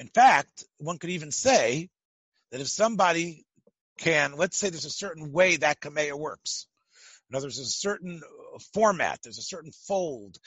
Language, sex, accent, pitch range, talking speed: English, male, American, 170-225 Hz, 160 wpm